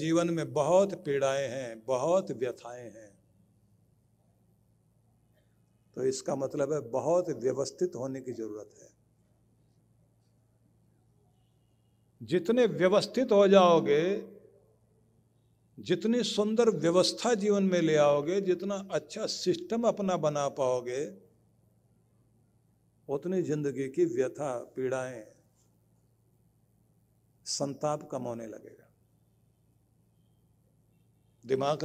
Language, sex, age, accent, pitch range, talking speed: Hindi, male, 60-79, native, 125-180 Hz, 85 wpm